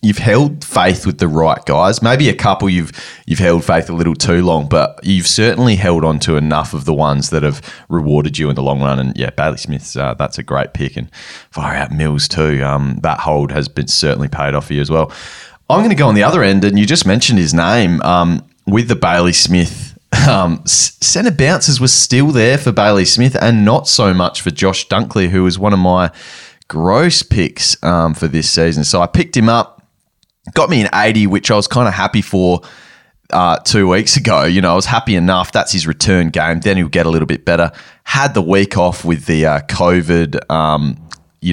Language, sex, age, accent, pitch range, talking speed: English, male, 20-39, Australian, 80-120 Hz, 225 wpm